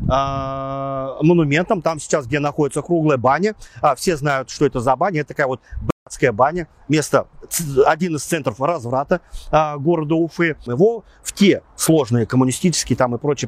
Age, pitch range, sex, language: 40-59, 120-160 Hz, male, Russian